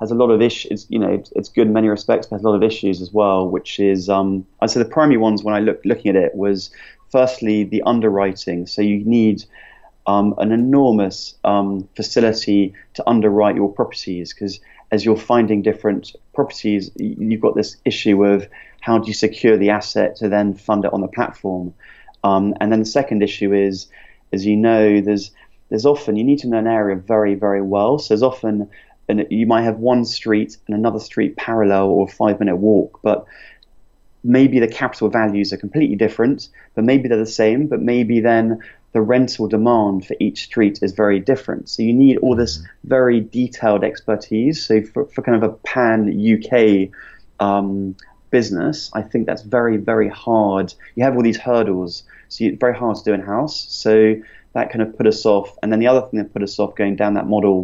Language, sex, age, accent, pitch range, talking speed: English, male, 30-49, British, 100-115 Hz, 200 wpm